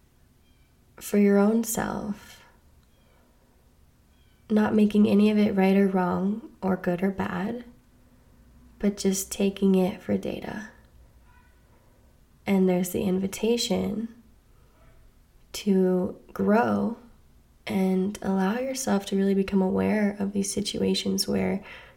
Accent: American